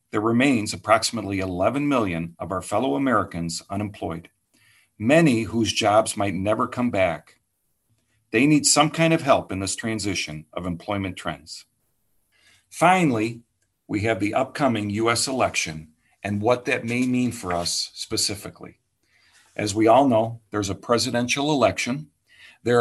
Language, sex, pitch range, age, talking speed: English, male, 95-130 Hz, 50-69, 140 wpm